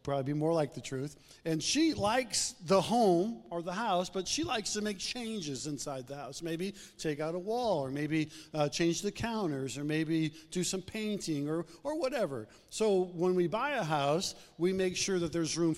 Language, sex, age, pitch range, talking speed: English, male, 50-69, 150-185 Hz, 205 wpm